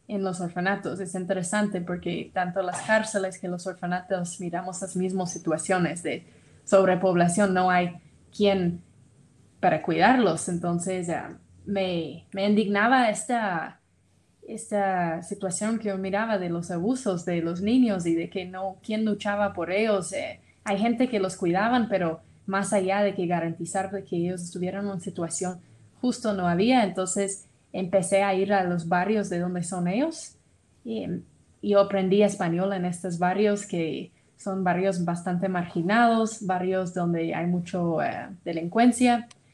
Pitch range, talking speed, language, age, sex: 175-205 Hz, 150 wpm, Spanish, 20-39, female